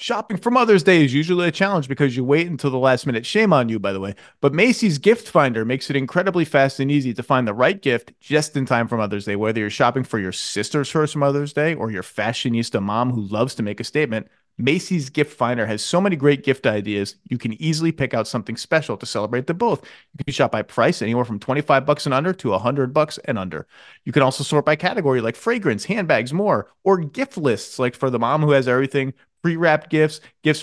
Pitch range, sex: 125-160 Hz, male